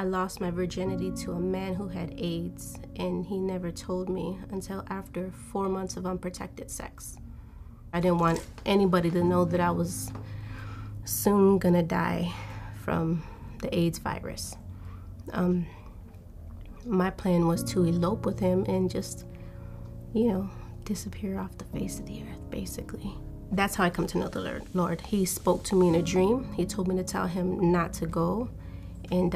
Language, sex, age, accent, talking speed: English, female, 30-49, American, 170 wpm